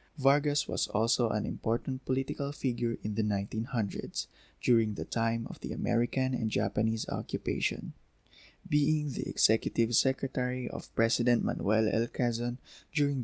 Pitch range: 105-130 Hz